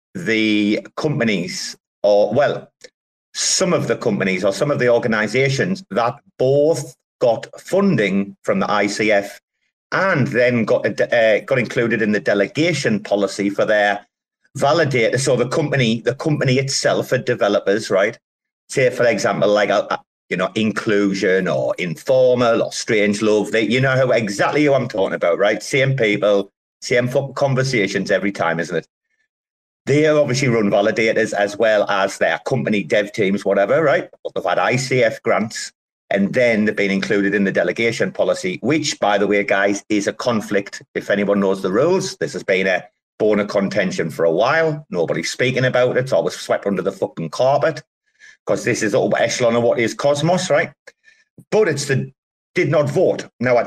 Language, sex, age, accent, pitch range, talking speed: English, male, 40-59, British, 105-150 Hz, 170 wpm